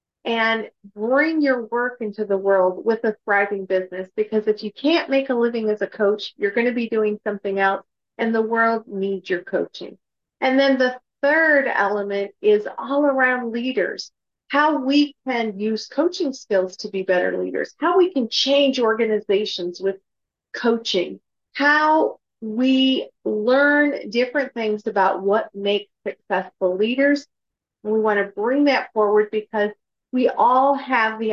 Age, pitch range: 40-59, 200-265 Hz